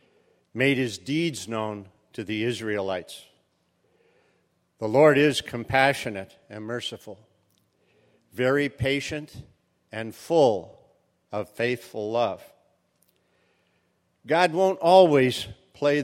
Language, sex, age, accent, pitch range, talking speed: English, male, 50-69, American, 110-145 Hz, 90 wpm